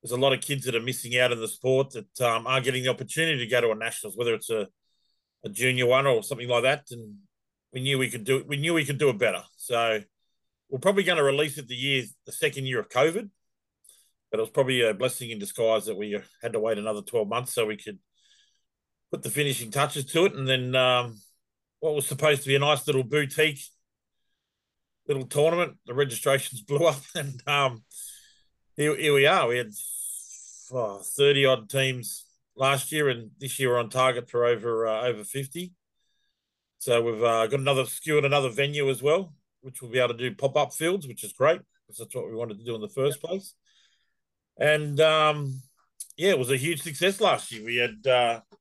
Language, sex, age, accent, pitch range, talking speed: English, male, 40-59, Australian, 125-155 Hz, 215 wpm